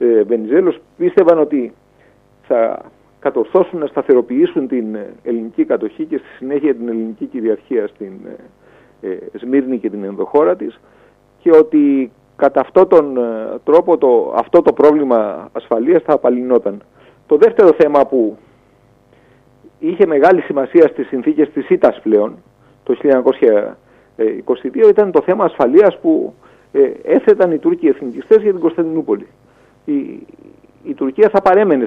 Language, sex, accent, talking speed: Greek, male, Spanish, 130 wpm